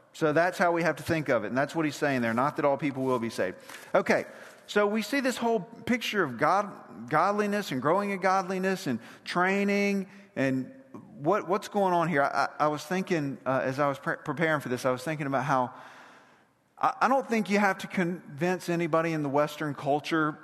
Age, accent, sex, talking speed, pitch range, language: 40-59, American, male, 210 wpm, 130-175 Hz, English